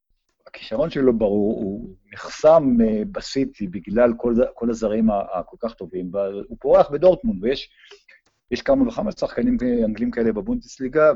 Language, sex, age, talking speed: Hebrew, male, 50-69, 125 wpm